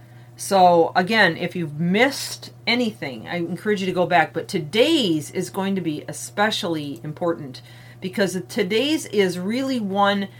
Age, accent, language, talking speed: 40-59, American, English, 145 wpm